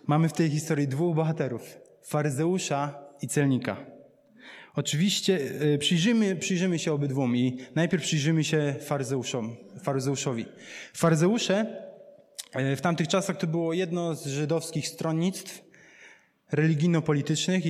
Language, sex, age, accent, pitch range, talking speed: Polish, male, 20-39, native, 150-175 Hz, 100 wpm